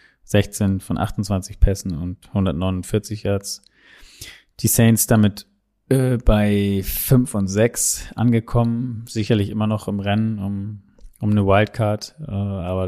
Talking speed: 125 wpm